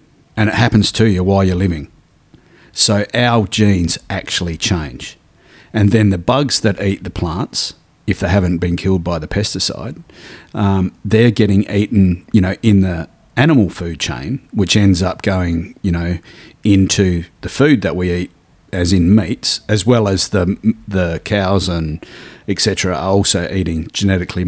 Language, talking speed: English, 165 wpm